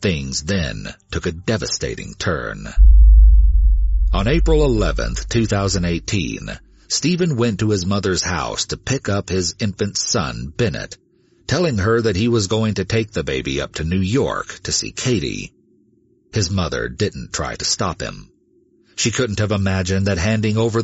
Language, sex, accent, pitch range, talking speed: English, male, American, 85-110 Hz, 155 wpm